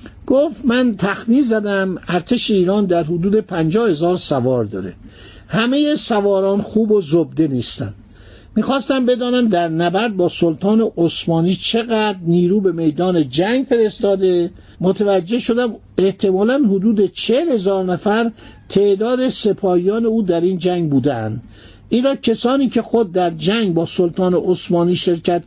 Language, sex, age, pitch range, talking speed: Persian, male, 60-79, 165-215 Hz, 130 wpm